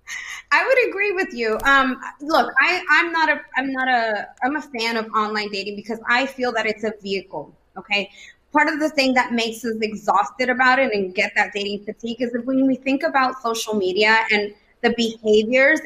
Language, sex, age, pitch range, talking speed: English, female, 20-39, 210-265 Hz, 200 wpm